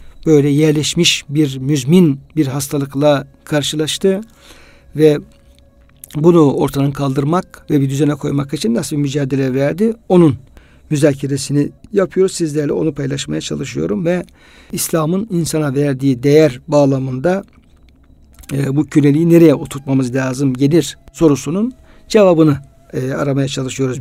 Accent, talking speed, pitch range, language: native, 110 wpm, 140-180 Hz, Turkish